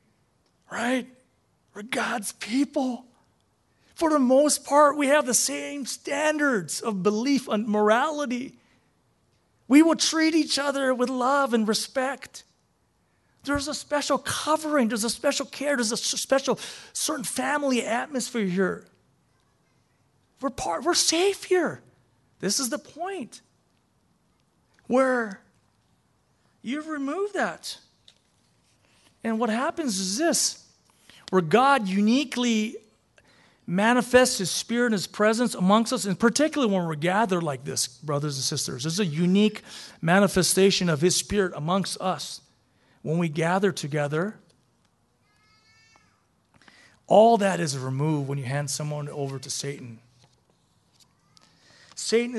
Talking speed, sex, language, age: 120 wpm, male, English, 40-59